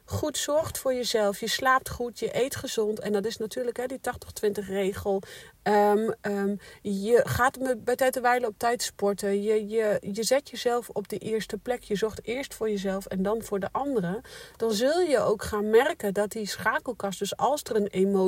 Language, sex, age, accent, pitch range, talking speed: Dutch, female, 40-59, Dutch, 200-255 Hz, 195 wpm